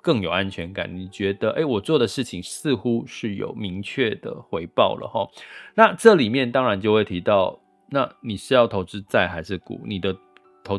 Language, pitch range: Chinese, 90-115 Hz